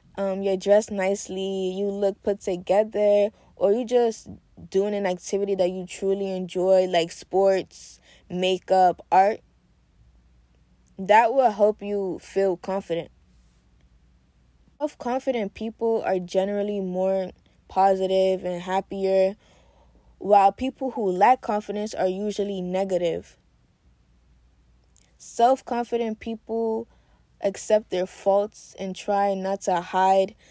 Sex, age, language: female, 20-39, English